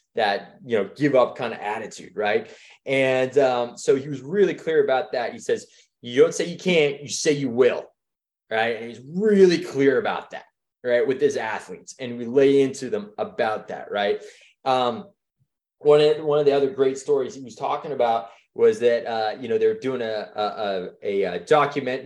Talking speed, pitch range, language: 195 wpm, 130-220 Hz, English